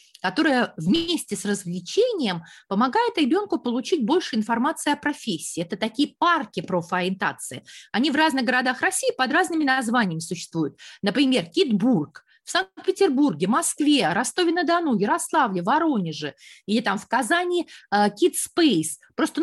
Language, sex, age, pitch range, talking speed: Russian, female, 30-49, 215-330 Hz, 120 wpm